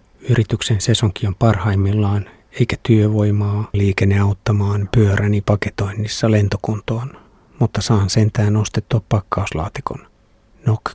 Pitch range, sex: 100-110 Hz, male